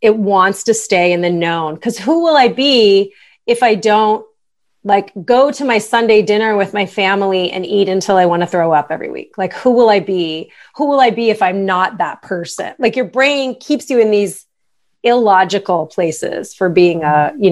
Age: 30-49